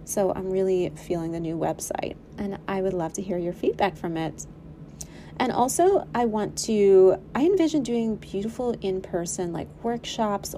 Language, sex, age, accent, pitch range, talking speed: English, female, 30-49, American, 170-210 Hz, 165 wpm